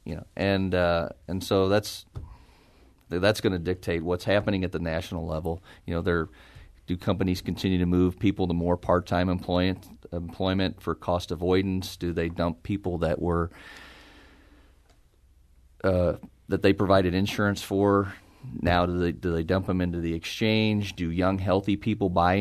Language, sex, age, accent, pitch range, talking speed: English, male, 40-59, American, 85-95 Hz, 160 wpm